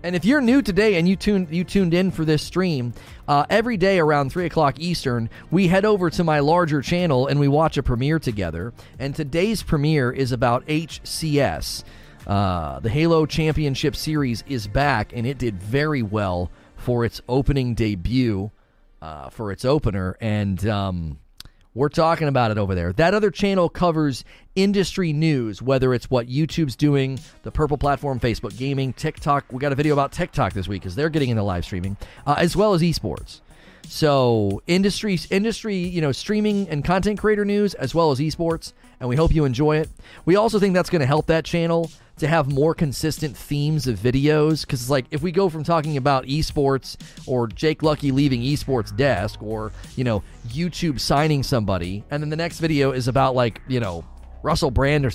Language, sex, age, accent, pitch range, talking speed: English, male, 30-49, American, 120-165 Hz, 190 wpm